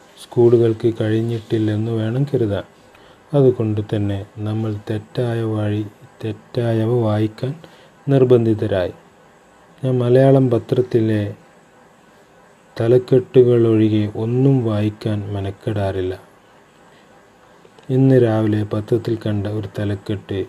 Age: 30-49